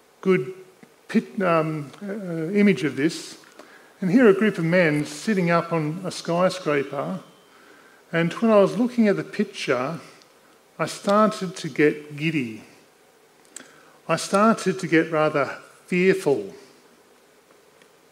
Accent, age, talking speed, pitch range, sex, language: Australian, 50-69, 125 wpm, 155-200 Hz, male, English